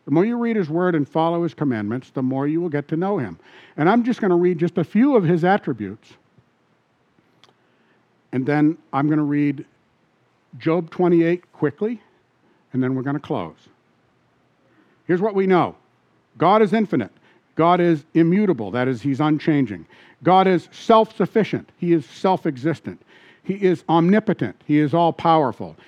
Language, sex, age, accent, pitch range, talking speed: English, male, 60-79, American, 135-190 Hz, 165 wpm